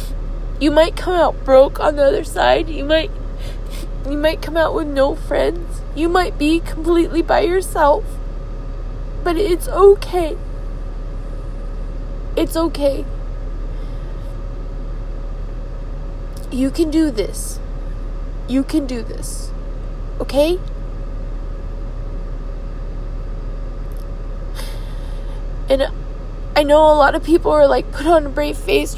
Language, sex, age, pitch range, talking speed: English, female, 20-39, 275-325 Hz, 110 wpm